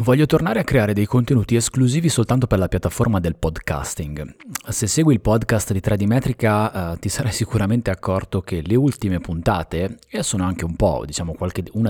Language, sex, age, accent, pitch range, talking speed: Italian, male, 30-49, native, 90-120 Hz, 180 wpm